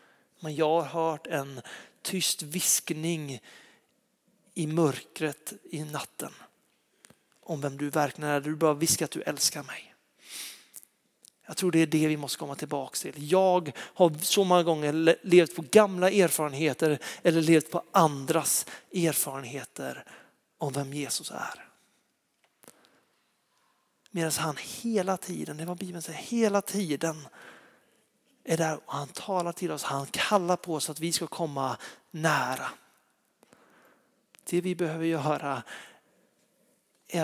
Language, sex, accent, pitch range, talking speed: Swedish, male, native, 150-180 Hz, 135 wpm